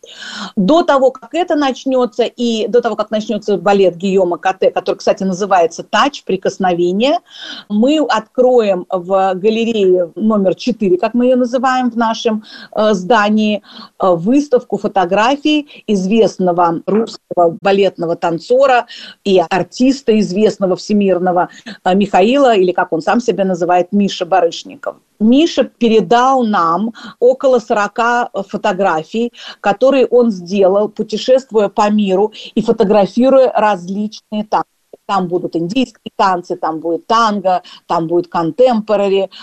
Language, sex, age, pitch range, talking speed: Russian, female, 40-59, 190-245 Hz, 115 wpm